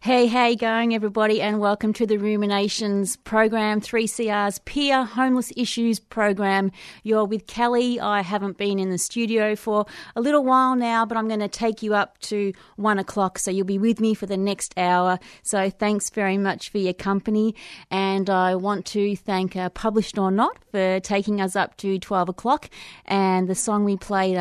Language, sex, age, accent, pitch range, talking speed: English, female, 30-49, Australian, 185-220 Hz, 190 wpm